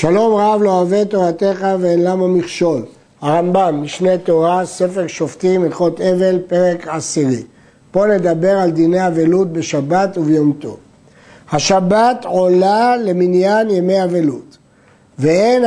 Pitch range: 165-215 Hz